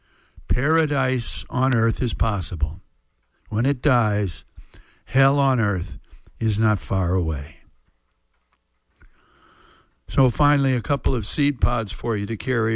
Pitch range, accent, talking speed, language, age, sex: 100-140 Hz, American, 120 wpm, English, 60-79, male